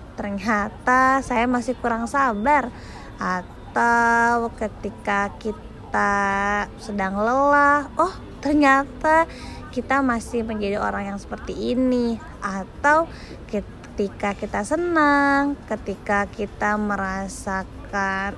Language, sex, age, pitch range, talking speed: Indonesian, female, 20-39, 205-280 Hz, 85 wpm